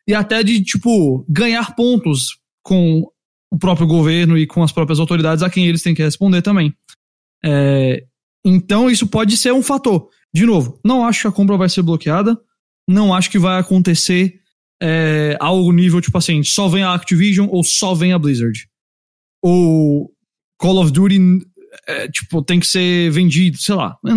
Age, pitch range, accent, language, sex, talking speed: 20-39, 165-205 Hz, Brazilian, English, male, 170 wpm